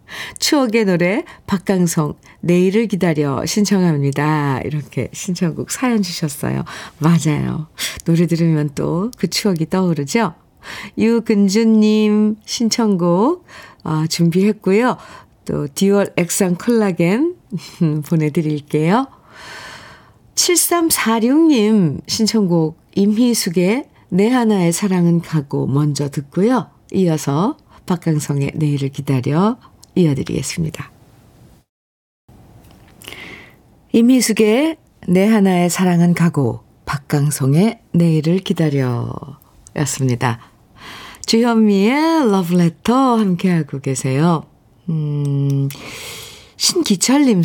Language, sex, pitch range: Korean, female, 150-210 Hz